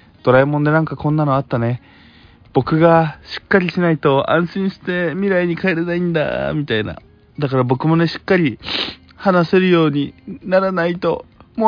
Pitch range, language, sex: 105-165 Hz, Japanese, male